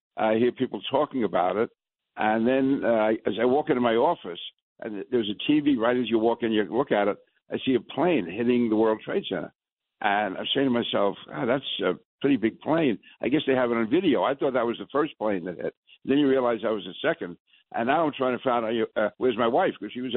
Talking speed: 250 wpm